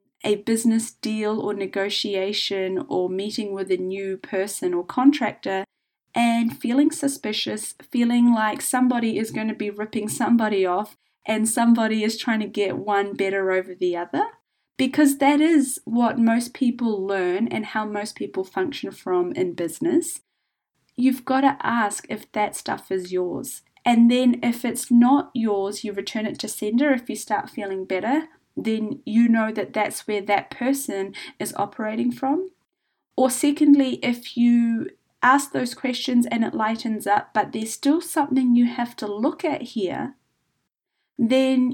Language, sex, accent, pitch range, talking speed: English, female, Australian, 210-270 Hz, 160 wpm